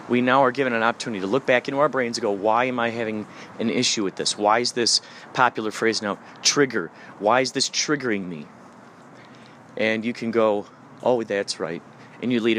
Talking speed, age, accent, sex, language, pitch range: 210 wpm, 40-59, American, male, English, 100-125 Hz